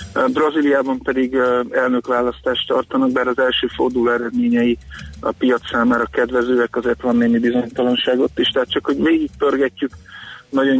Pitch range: 120-130 Hz